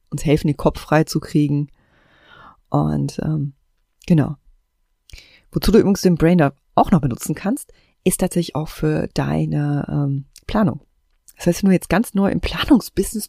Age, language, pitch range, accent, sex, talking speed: 30-49, German, 150-195 Hz, German, female, 150 wpm